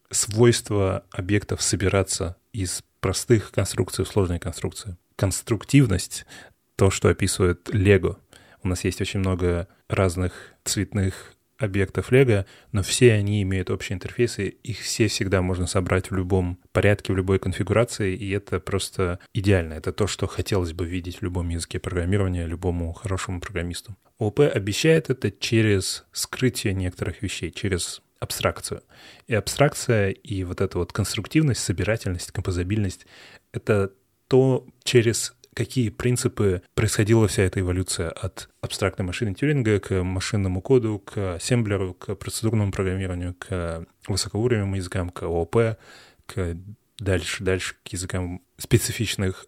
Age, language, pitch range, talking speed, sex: 20-39, Russian, 95-110 Hz, 130 wpm, male